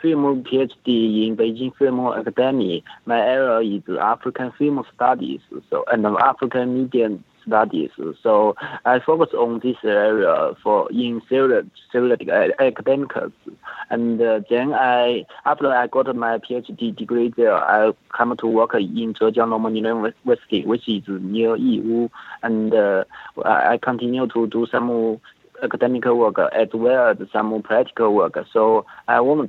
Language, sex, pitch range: English, male, 115-135 Hz